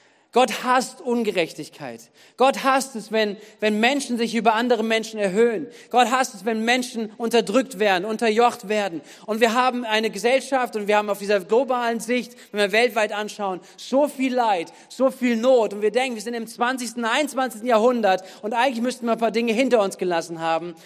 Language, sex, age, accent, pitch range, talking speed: German, male, 40-59, German, 200-235 Hz, 185 wpm